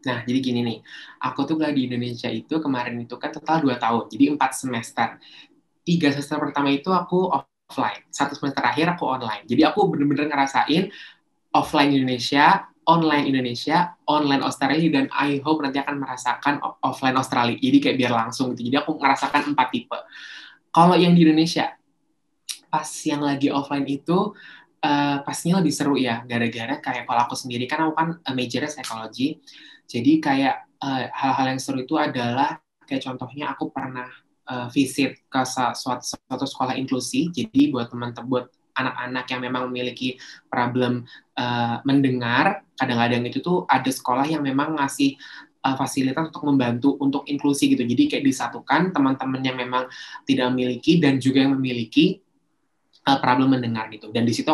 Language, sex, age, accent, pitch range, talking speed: Indonesian, male, 20-39, native, 125-150 Hz, 165 wpm